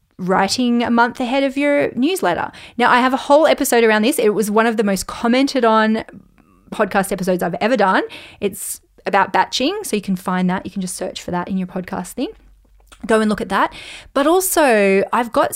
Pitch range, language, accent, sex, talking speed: 195-250 Hz, English, Australian, female, 210 wpm